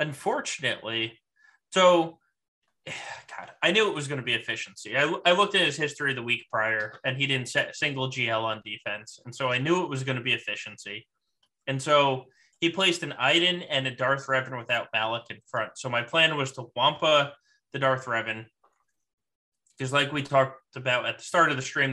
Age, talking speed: 20-39, 200 wpm